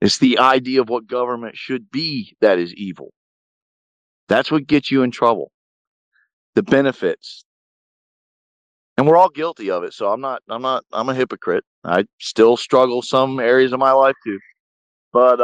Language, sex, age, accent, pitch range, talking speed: English, male, 40-59, American, 125-155 Hz, 165 wpm